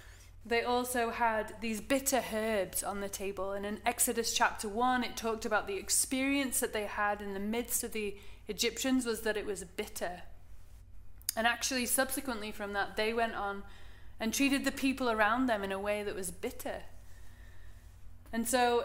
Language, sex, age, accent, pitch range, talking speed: English, female, 30-49, British, 195-235 Hz, 175 wpm